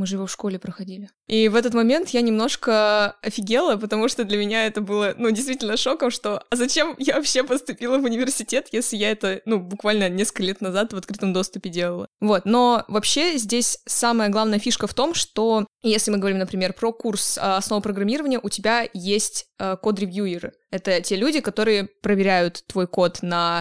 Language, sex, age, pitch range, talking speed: Russian, female, 20-39, 195-235 Hz, 180 wpm